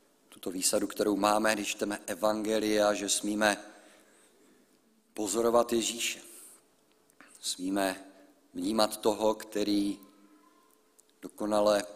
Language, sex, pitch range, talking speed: Czech, male, 105-135 Hz, 80 wpm